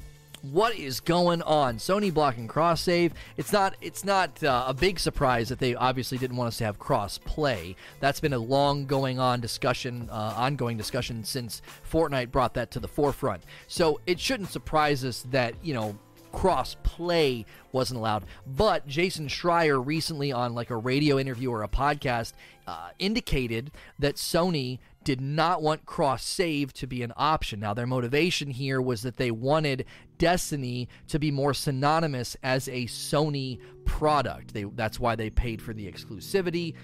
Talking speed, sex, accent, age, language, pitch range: 170 wpm, male, American, 30-49, English, 120-150 Hz